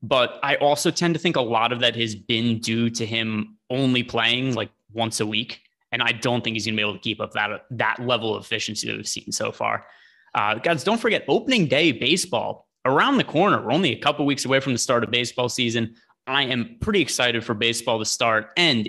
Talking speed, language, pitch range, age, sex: 240 wpm, English, 115-140 Hz, 20-39, male